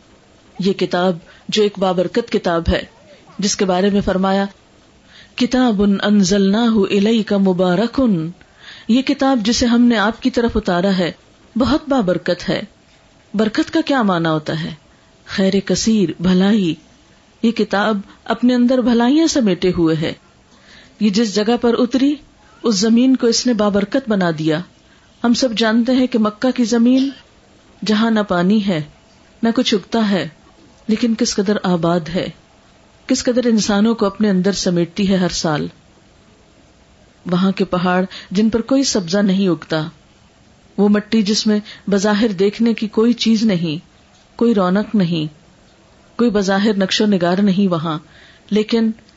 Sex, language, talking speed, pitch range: female, Urdu, 150 wpm, 185-230 Hz